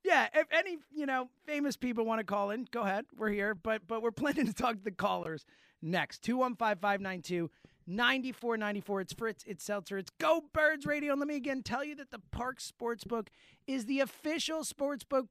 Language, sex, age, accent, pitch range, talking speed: English, male, 30-49, American, 215-260 Hz, 190 wpm